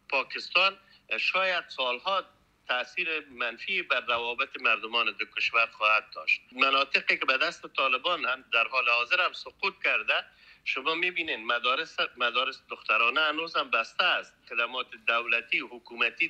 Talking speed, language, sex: 135 wpm, Persian, male